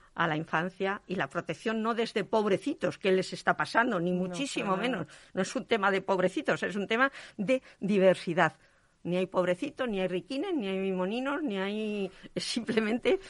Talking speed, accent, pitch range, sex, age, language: 175 wpm, Spanish, 175-220 Hz, female, 50-69, Spanish